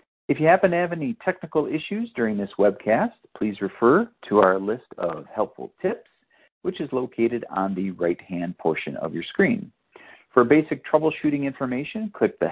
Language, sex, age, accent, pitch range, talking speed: English, male, 50-69, American, 105-155 Hz, 170 wpm